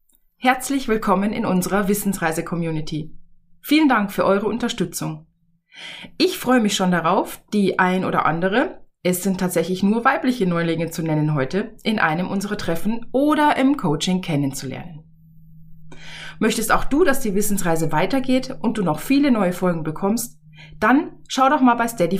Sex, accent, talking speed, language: female, German, 150 wpm, German